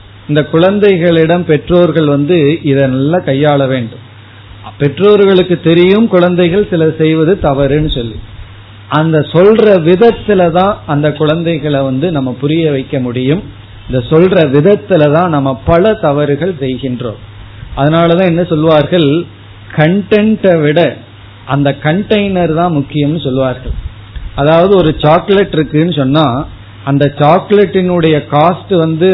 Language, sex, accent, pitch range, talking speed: Tamil, male, native, 135-175 Hz, 110 wpm